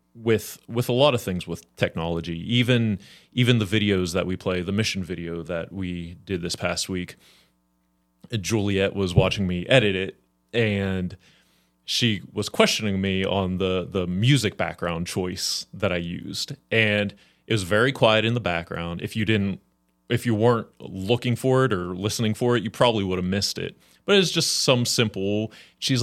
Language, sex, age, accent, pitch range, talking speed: English, male, 30-49, American, 90-115 Hz, 175 wpm